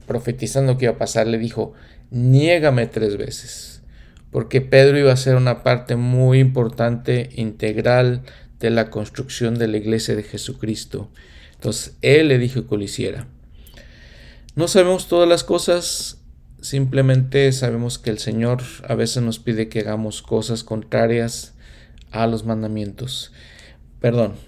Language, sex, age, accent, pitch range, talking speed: Spanish, male, 40-59, Mexican, 110-130 Hz, 140 wpm